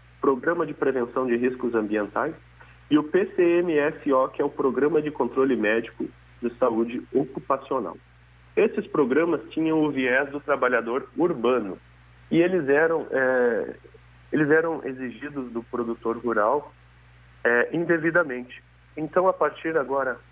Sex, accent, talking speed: male, Brazilian, 125 wpm